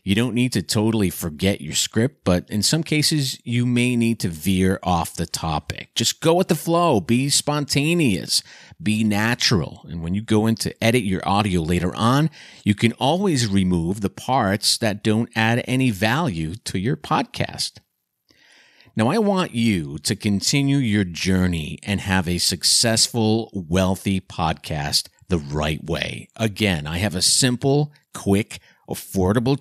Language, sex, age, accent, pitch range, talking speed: English, male, 50-69, American, 95-120 Hz, 160 wpm